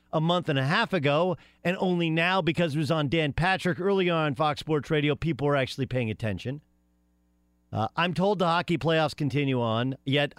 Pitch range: 110-175 Hz